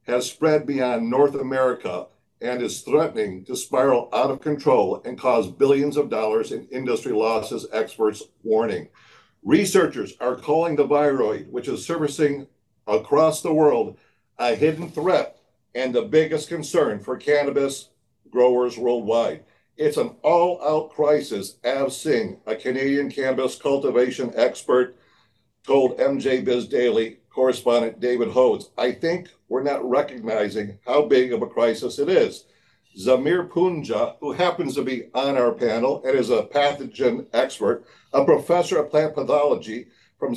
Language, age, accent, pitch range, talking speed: English, 60-79, American, 125-165 Hz, 145 wpm